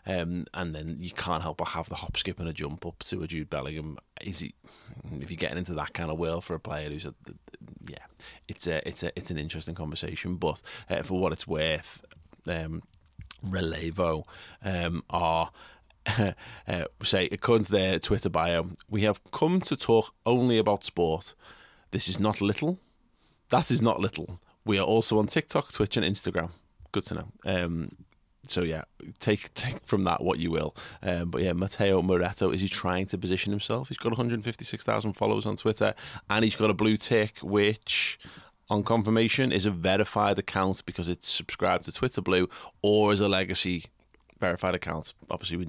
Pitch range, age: 85-105 Hz, 30-49